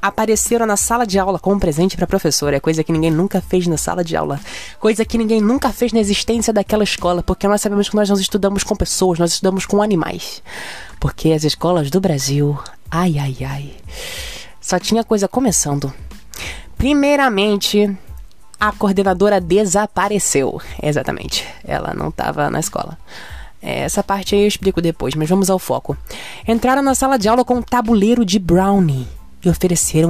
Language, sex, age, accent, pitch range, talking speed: Portuguese, female, 20-39, Brazilian, 165-220 Hz, 170 wpm